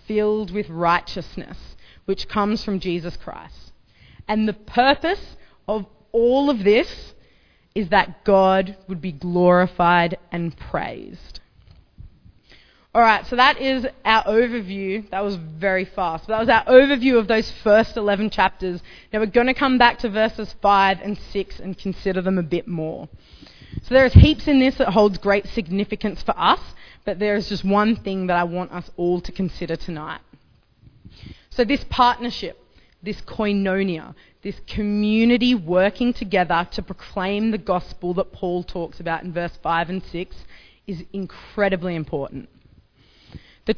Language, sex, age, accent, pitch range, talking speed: English, female, 20-39, Australian, 180-225 Hz, 150 wpm